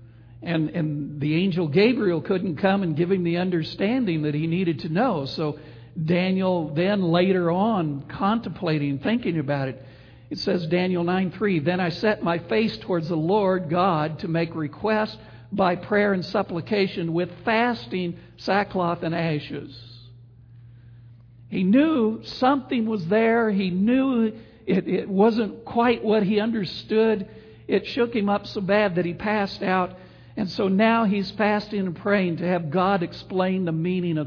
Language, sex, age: English, male, 60-79